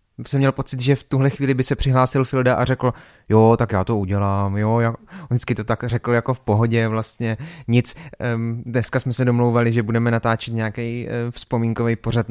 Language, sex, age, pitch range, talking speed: Czech, male, 20-39, 115-135 Hz, 195 wpm